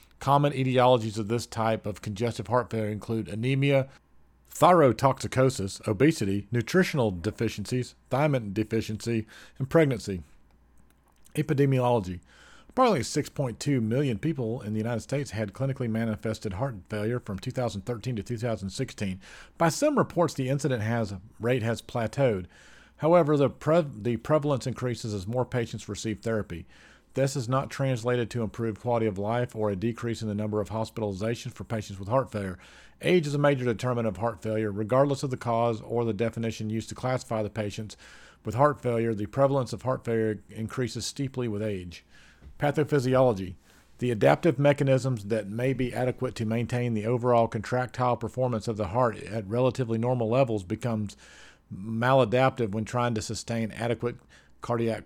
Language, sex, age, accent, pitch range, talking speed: English, male, 40-59, American, 110-130 Hz, 150 wpm